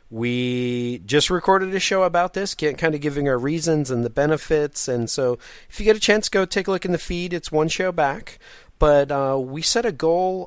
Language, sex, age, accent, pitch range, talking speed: English, male, 40-59, American, 115-165 Hz, 225 wpm